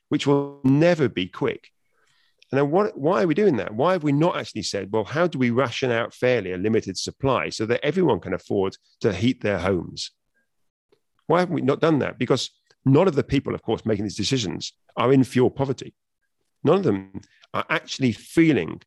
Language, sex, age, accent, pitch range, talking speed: English, male, 40-59, British, 105-140 Hz, 205 wpm